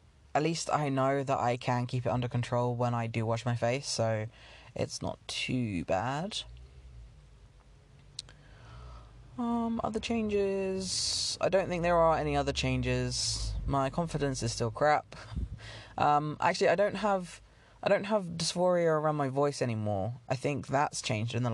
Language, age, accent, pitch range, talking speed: English, 20-39, British, 115-155 Hz, 160 wpm